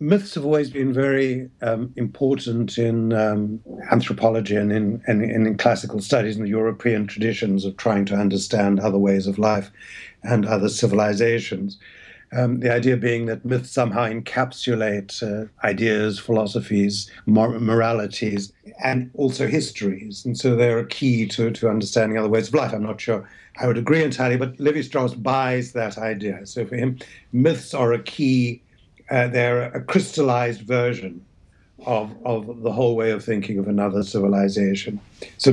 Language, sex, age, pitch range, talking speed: English, male, 60-79, 105-130 Hz, 160 wpm